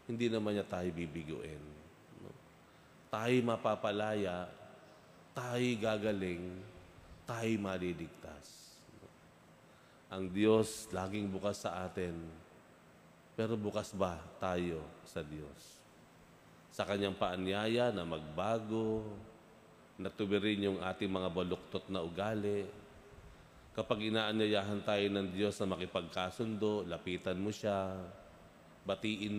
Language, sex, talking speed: Filipino, male, 95 wpm